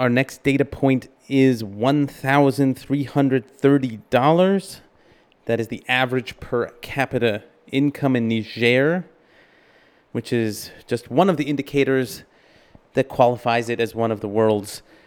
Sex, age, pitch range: male, 30-49, 115-145 Hz